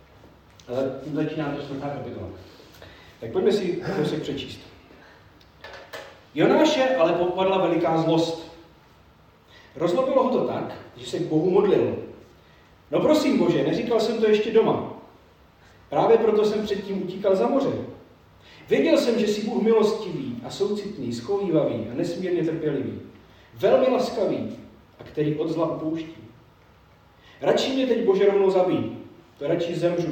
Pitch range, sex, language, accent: 120-205 Hz, male, Czech, native